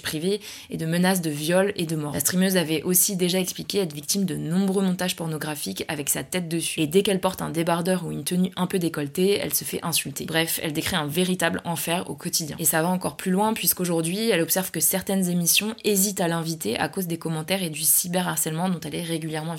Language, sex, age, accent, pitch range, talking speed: French, female, 20-39, French, 160-190 Hz, 230 wpm